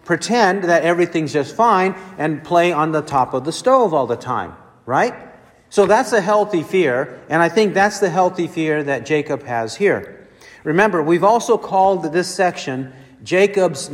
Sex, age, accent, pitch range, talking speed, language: male, 50-69, American, 155-205 Hz, 170 wpm, English